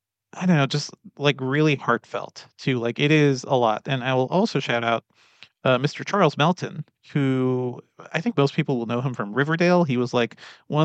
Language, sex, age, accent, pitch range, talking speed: English, male, 40-59, American, 120-145 Hz, 205 wpm